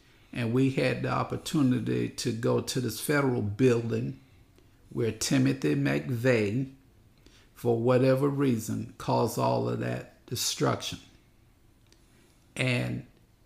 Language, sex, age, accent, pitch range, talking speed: English, male, 50-69, American, 110-130 Hz, 105 wpm